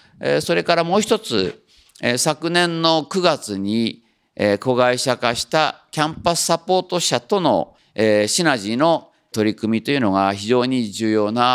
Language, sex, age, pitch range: Japanese, male, 50-69, 110-175 Hz